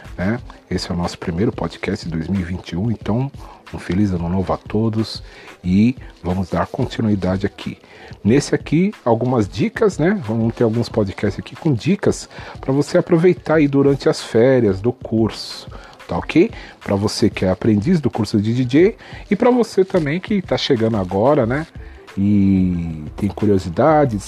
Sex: male